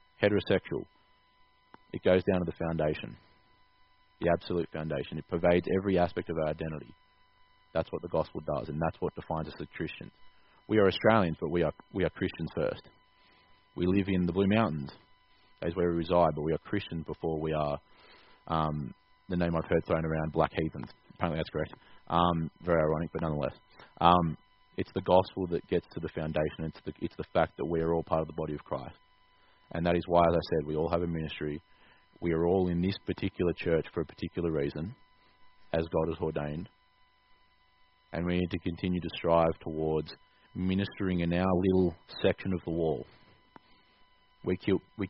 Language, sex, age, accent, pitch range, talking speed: English, male, 30-49, Australian, 80-90 Hz, 190 wpm